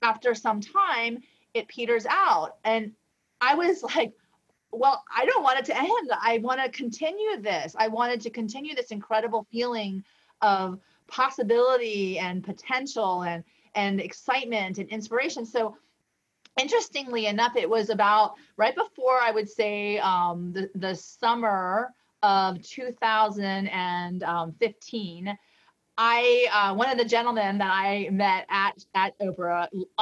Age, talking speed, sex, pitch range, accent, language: 30-49, 135 wpm, female, 185-240 Hz, American, English